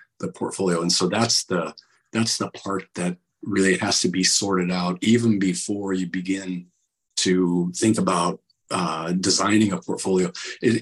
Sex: male